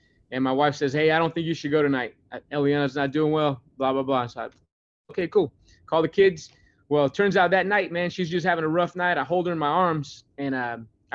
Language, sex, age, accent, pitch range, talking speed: English, male, 20-39, American, 130-170 Hz, 255 wpm